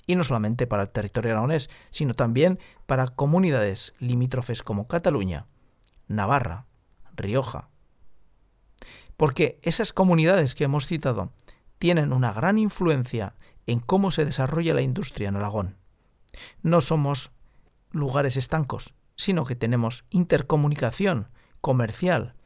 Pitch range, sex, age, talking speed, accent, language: 115-155 Hz, male, 50-69, 115 wpm, Spanish, Spanish